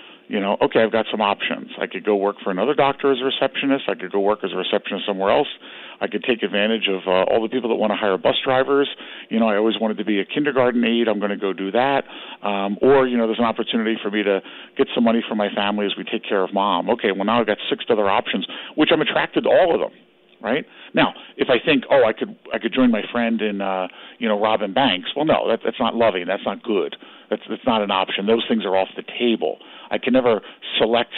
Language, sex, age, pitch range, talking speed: English, male, 50-69, 100-120 Hz, 265 wpm